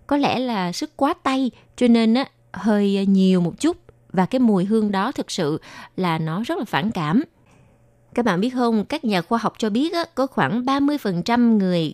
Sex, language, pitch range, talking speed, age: female, Vietnamese, 180-255 Hz, 205 wpm, 20-39